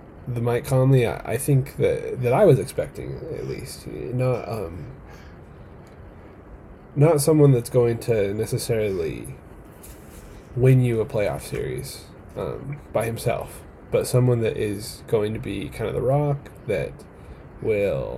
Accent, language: American, English